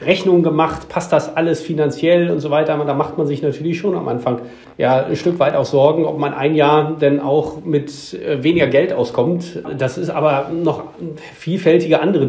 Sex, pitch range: male, 135-155 Hz